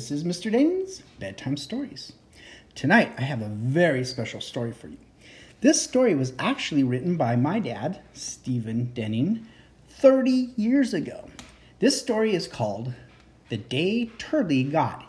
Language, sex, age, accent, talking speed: English, male, 40-59, American, 145 wpm